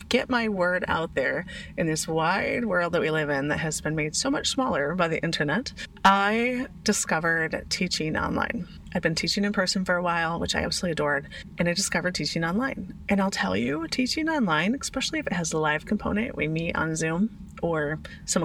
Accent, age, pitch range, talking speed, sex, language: American, 30-49, 165-225 Hz, 205 wpm, female, English